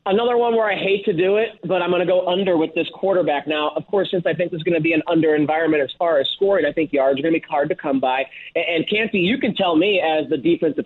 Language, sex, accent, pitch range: English, male, American, 175-245 Hz